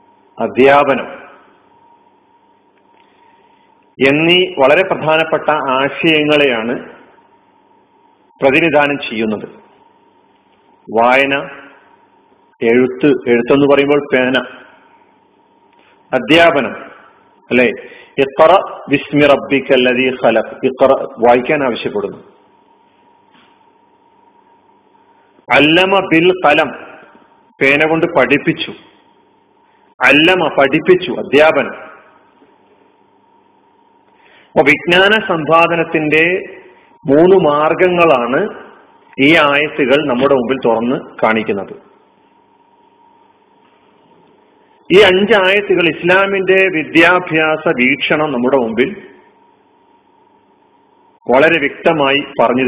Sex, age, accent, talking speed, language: male, 40-59, native, 55 wpm, Malayalam